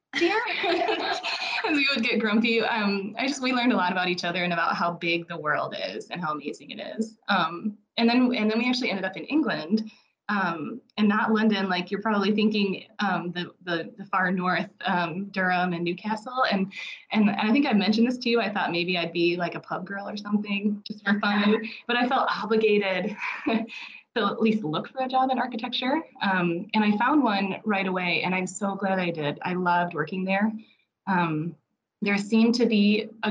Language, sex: English, female